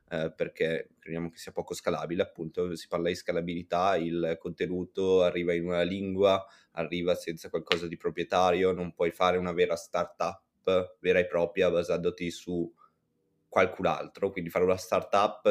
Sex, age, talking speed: male, 20-39, 155 wpm